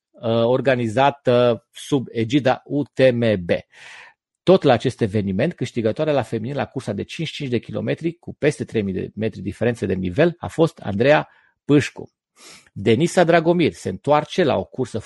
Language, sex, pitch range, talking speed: Romanian, male, 115-165 Hz, 145 wpm